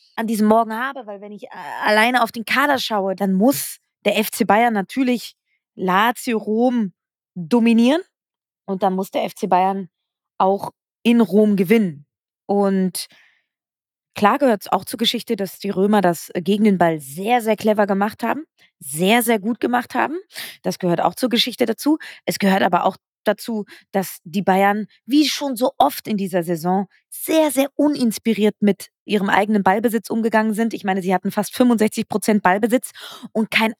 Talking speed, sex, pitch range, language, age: 170 wpm, female, 205-250 Hz, German, 20-39